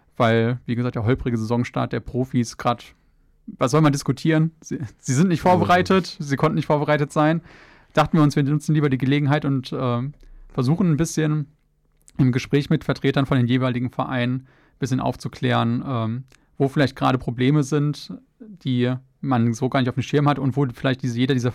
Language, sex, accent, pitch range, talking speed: German, male, German, 125-155 Hz, 185 wpm